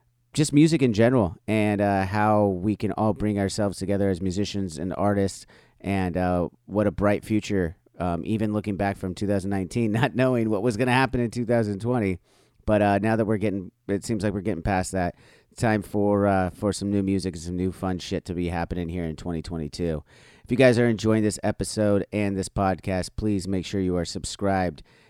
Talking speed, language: 200 wpm, English